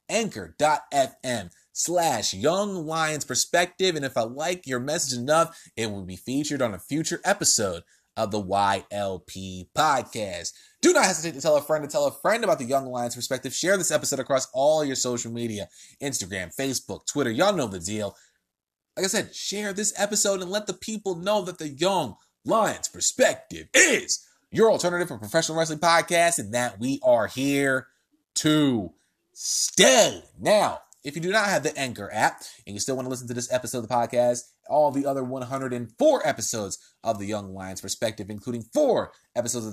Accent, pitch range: American, 120-175 Hz